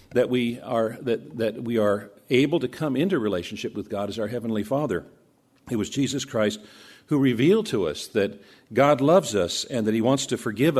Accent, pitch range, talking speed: American, 110-135 Hz, 200 wpm